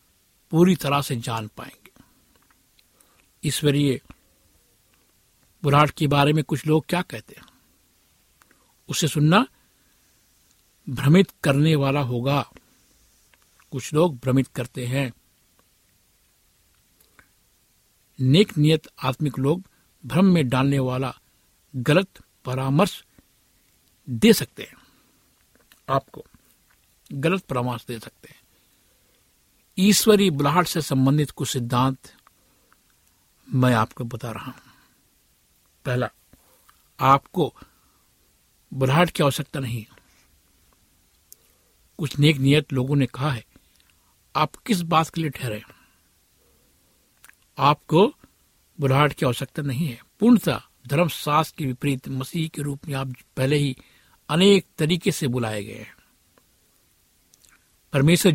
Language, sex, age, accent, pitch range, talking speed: Hindi, male, 60-79, native, 115-155 Hz, 105 wpm